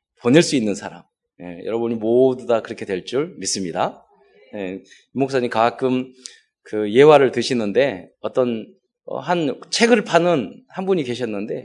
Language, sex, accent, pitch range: Korean, male, native, 135-215 Hz